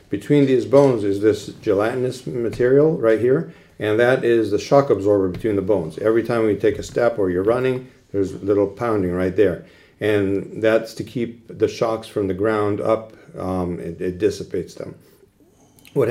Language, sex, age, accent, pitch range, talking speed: English, male, 50-69, American, 95-120 Hz, 180 wpm